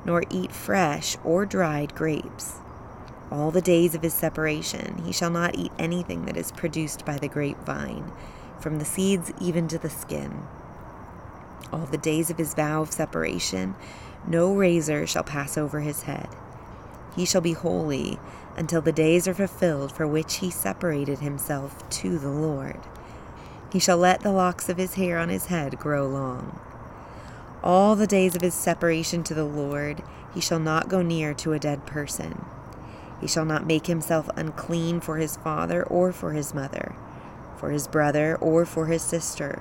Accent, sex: American, female